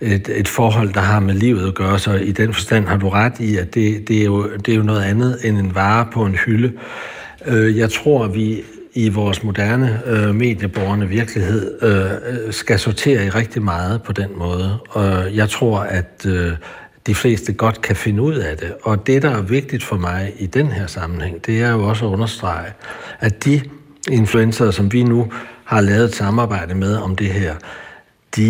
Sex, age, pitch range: male, 60-79, 100-115 Hz